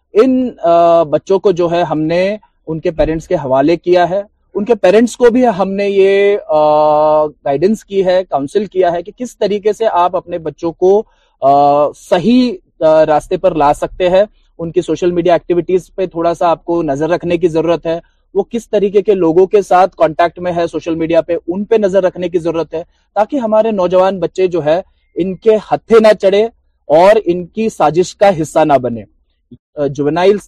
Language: Urdu